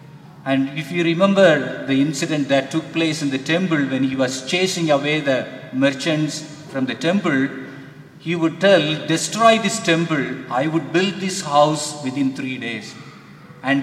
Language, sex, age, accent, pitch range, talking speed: English, male, 50-69, Indian, 135-175 Hz, 160 wpm